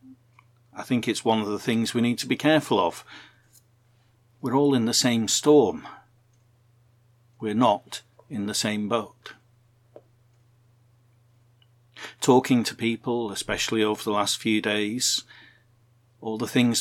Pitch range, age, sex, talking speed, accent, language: 110-120 Hz, 50-69, male, 130 wpm, British, English